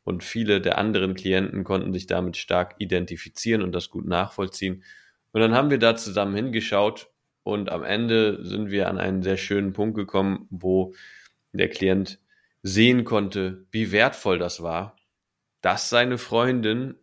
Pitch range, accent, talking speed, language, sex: 90-110 Hz, German, 155 wpm, German, male